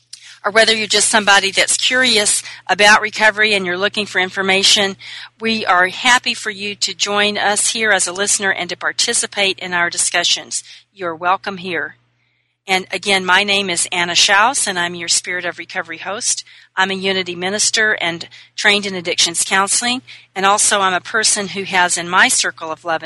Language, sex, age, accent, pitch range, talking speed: English, female, 40-59, American, 170-200 Hz, 180 wpm